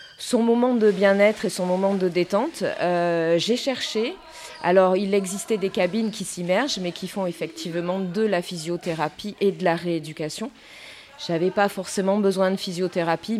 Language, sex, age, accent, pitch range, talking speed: French, female, 30-49, French, 165-210 Hz, 165 wpm